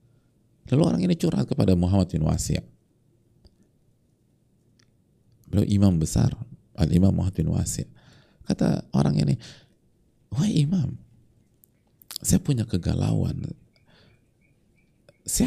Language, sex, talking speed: Indonesian, male, 95 wpm